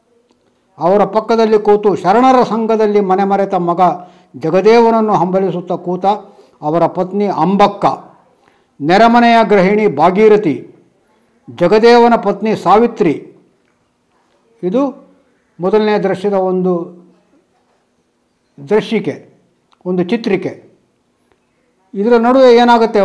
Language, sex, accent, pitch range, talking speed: Kannada, male, native, 180-220 Hz, 80 wpm